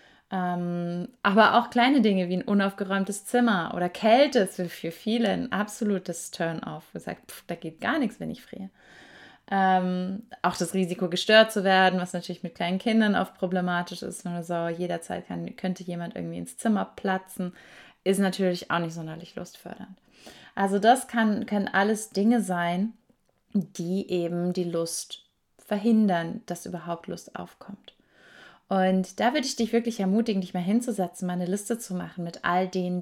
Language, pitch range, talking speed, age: German, 175-220 Hz, 170 wpm, 20-39